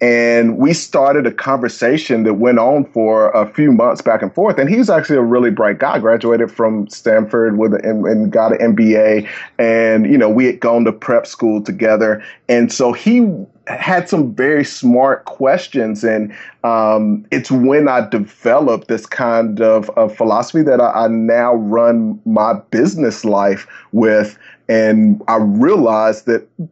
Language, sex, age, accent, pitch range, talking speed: English, male, 30-49, American, 110-125 Hz, 165 wpm